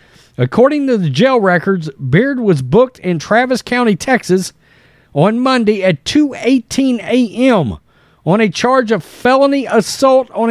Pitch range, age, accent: 160-245 Hz, 40-59, American